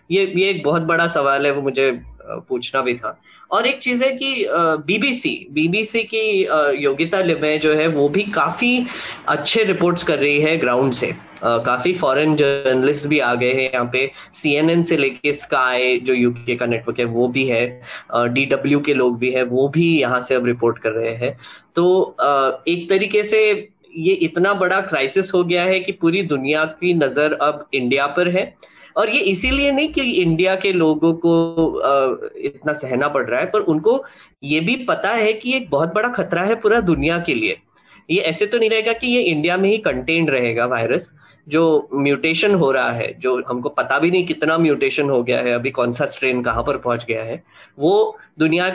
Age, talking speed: 10-29, 195 wpm